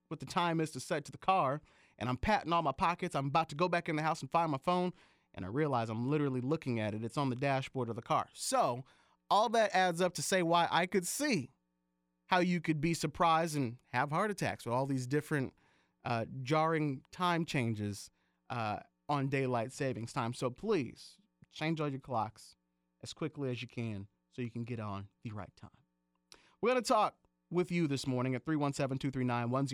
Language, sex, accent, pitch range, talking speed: English, male, American, 120-160 Hz, 210 wpm